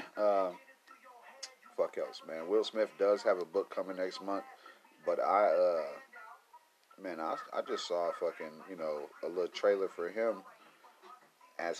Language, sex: English, male